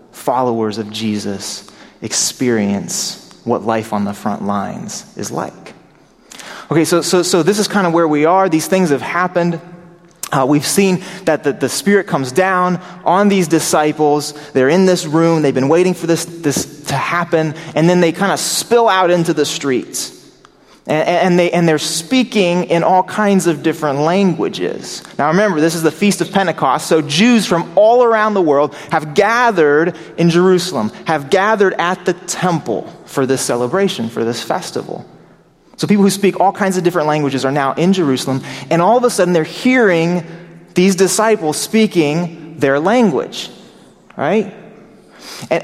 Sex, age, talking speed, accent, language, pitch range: male, 30-49, 170 wpm, American, English, 155-195 Hz